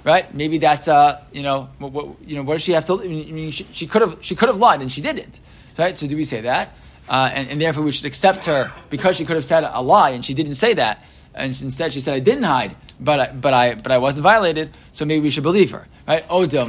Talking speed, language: 290 wpm, English